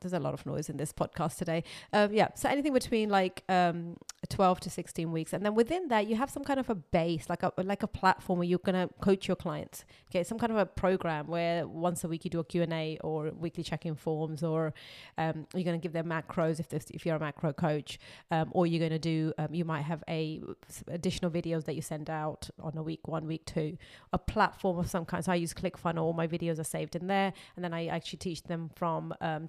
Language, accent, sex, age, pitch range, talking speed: English, British, female, 30-49, 165-200 Hz, 255 wpm